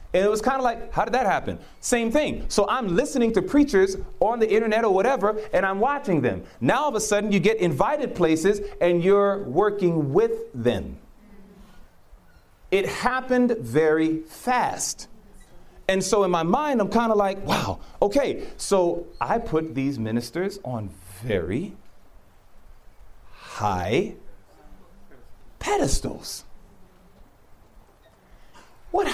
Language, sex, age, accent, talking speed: English, male, 40-59, American, 135 wpm